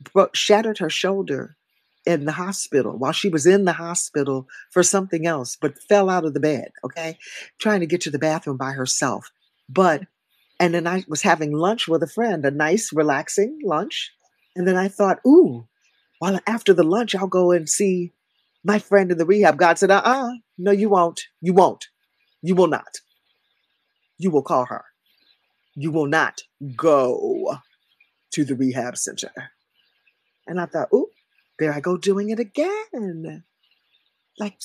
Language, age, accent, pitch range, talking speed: English, 40-59, American, 150-195 Hz, 170 wpm